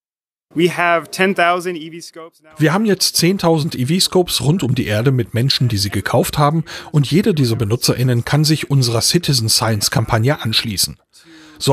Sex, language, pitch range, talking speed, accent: male, German, 115-160 Hz, 140 wpm, German